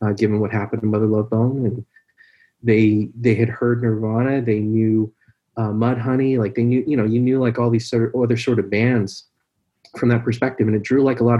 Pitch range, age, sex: 105-125 Hz, 30-49, male